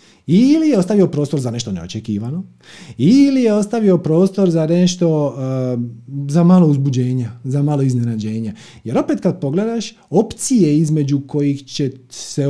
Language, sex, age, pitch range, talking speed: Croatian, male, 30-49, 120-195 Hz, 140 wpm